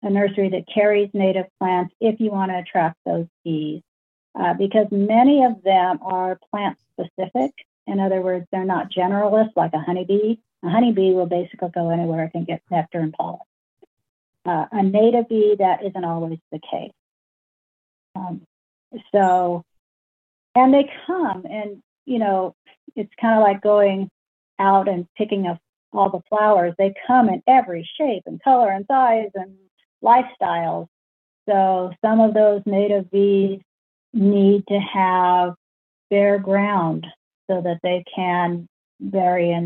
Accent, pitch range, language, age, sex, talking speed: American, 180-220 Hz, English, 50-69, female, 150 wpm